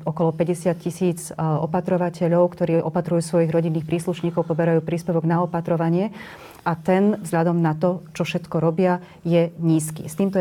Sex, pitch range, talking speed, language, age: female, 160-175 Hz, 145 wpm, Slovak, 30-49